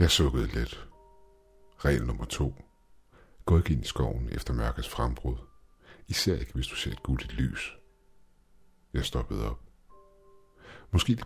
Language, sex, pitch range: Danish, male, 65-90 Hz